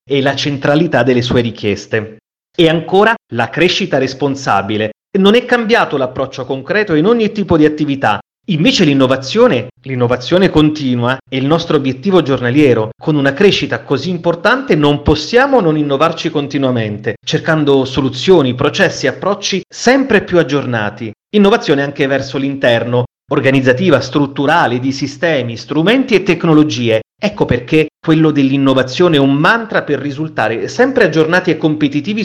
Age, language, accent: 30-49, Italian, native